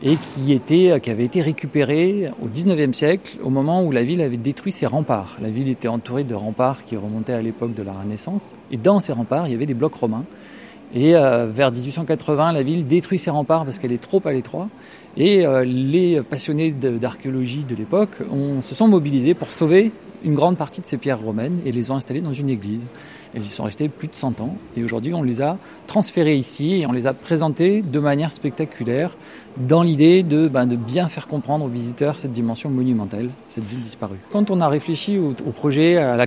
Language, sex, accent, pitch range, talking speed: French, male, French, 125-170 Hz, 215 wpm